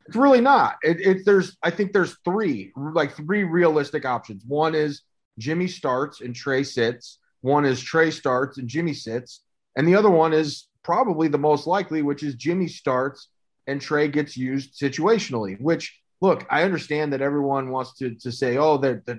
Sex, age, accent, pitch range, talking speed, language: male, 30-49, American, 140-185 Hz, 185 wpm, English